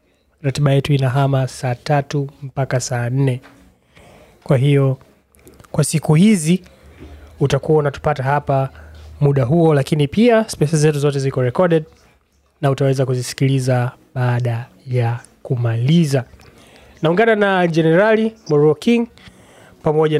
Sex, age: male, 20-39